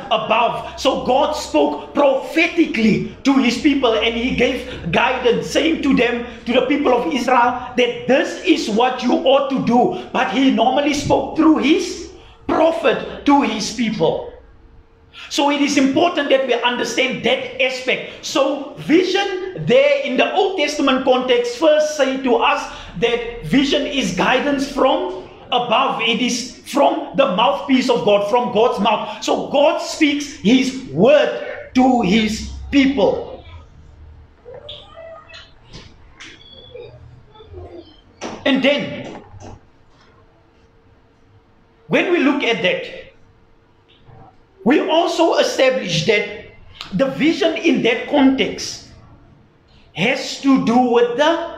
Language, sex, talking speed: English, male, 120 wpm